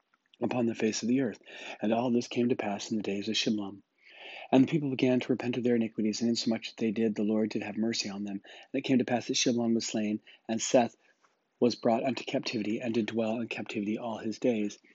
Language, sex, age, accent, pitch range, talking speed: English, male, 40-59, American, 110-120 Hz, 240 wpm